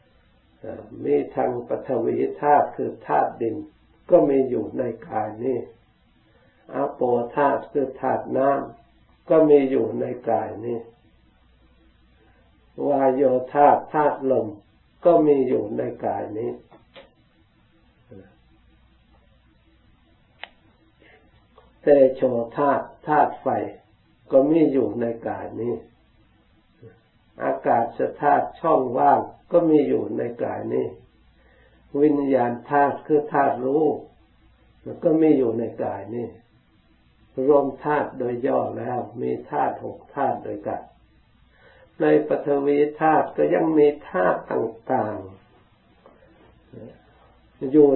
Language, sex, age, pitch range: Thai, male, 60-79, 110-145 Hz